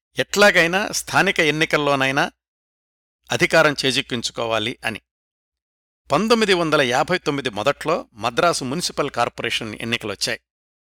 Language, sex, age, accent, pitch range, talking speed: Telugu, male, 60-79, native, 115-160 Hz, 70 wpm